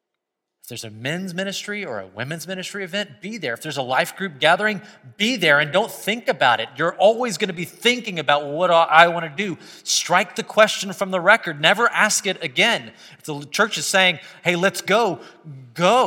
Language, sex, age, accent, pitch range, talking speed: English, male, 30-49, American, 165-230 Hz, 215 wpm